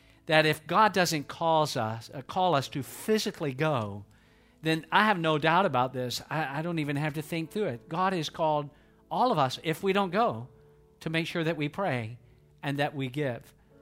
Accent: American